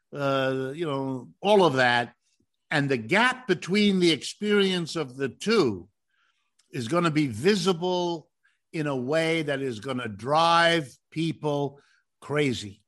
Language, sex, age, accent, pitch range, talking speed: English, male, 50-69, American, 145-200 Hz, 140 wpm